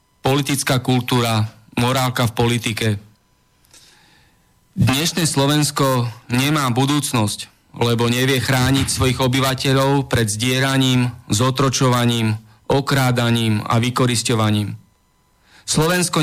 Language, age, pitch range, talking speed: Slovak, 40-59, 120-140 Hz, 80 wpm